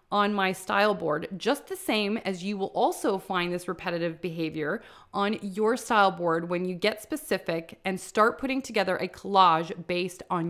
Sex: female